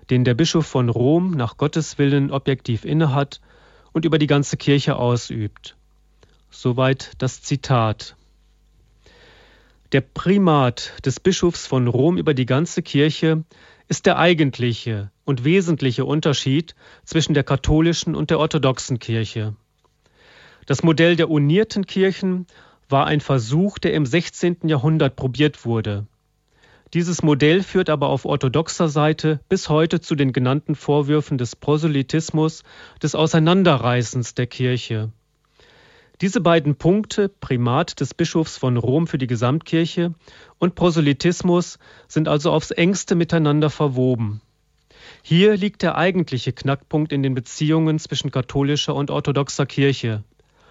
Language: German